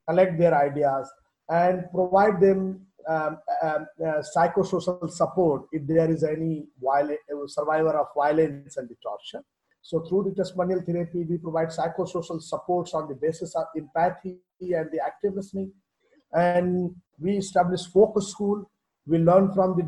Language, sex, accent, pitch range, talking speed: English, male, Indian, 155-185 Hz, 145 wpm